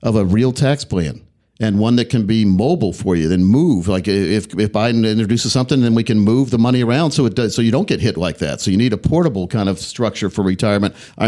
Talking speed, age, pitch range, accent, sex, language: 260 wpm, 50-69, 110-155 Hz, American, male, English